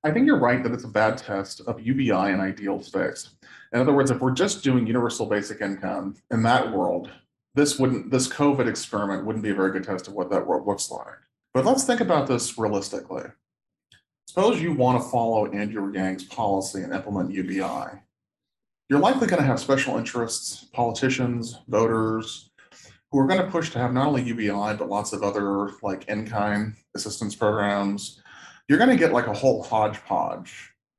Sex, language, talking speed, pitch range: male, English, 185 wpm, 105-130 Hz